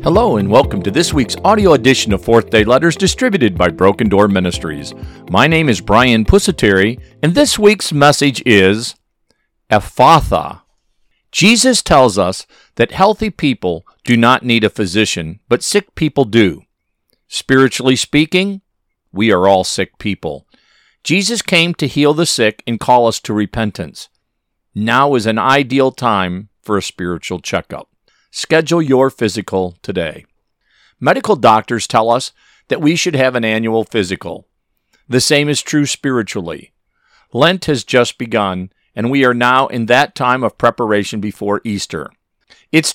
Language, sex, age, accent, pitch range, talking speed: English, male, 50-69, American, 105-145 Hz, 150 wpm